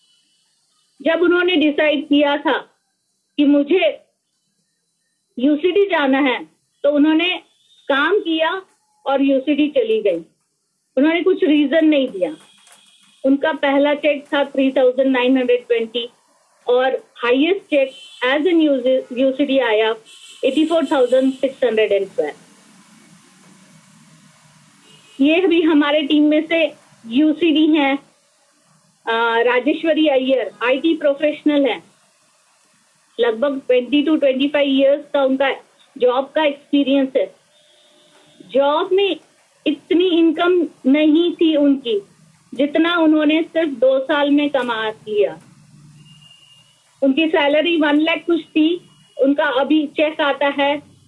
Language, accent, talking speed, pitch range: Hindi, native, 110 wpm, 245-310 Hz